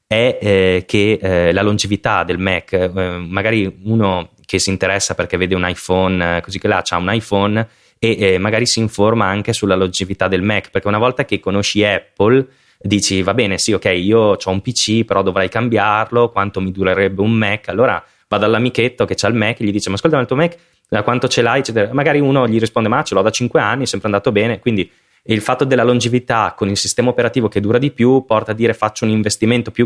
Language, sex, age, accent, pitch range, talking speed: Italian, male, 20-39, native, 95-120 Hz, 230 wpm